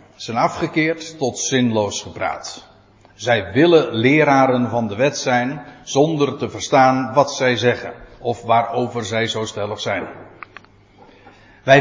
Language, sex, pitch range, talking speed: Dutch, male, 120-155 Hz, 125 wpm